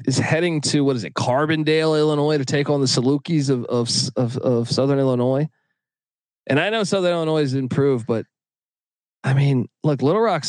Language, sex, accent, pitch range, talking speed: English, male, American, 120-155 Hz, 185 wpm